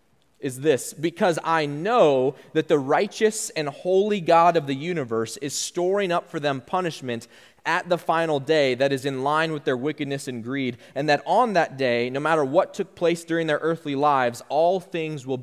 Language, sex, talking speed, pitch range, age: English, male, 195 wpm, 130-160 Hz, 20-39